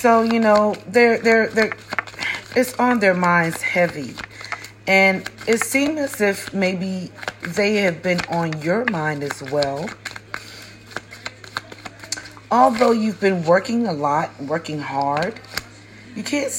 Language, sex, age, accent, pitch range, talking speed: English, female, 40-59, American, 140-195 Hz, 125 wpm